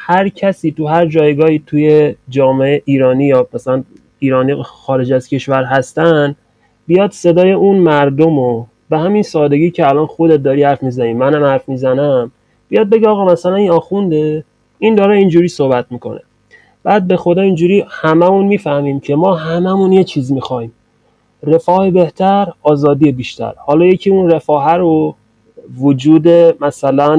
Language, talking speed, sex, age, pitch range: Persian, 145 wpm, male, 30-49, 135-175 Hz